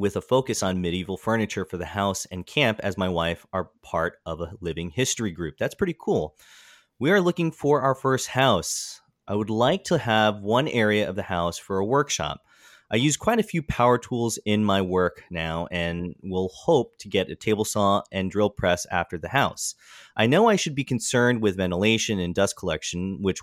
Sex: male